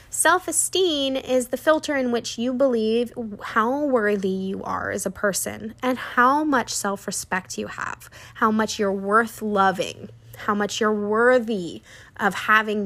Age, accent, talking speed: 10-29, American, 150 wpm